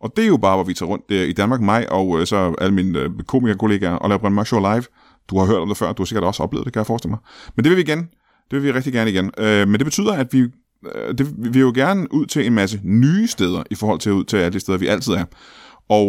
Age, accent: 30-49, native